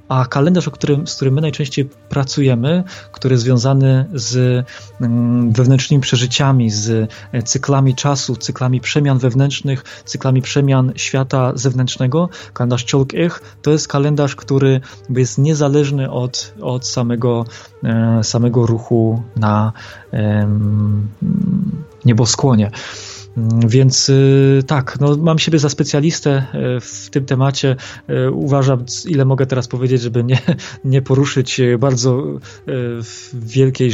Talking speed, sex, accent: 110 wpm, male, native